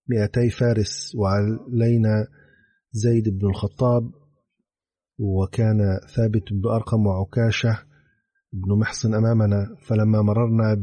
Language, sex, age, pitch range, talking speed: Arabic, male, 40-59, 100-115 Hz, 90 wpm